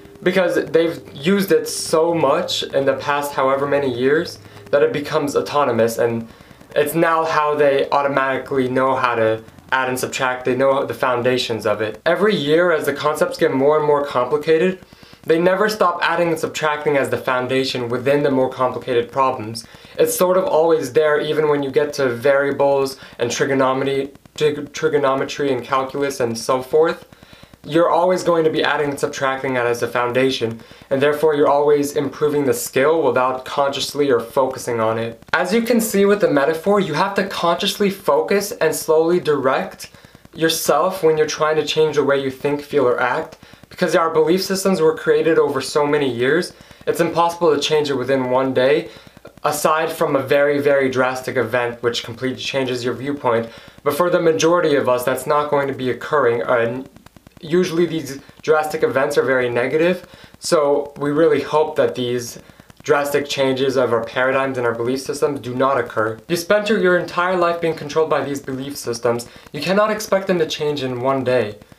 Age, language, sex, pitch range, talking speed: 20-39, English, male, 130-160 Hz, 180 wpm